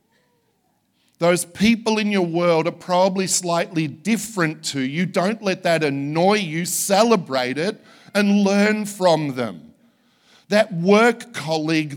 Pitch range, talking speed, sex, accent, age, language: 130-195 Hz, 125 wpm, male, Australian, 50-69, English